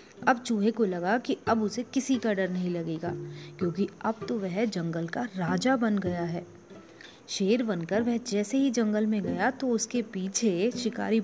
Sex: female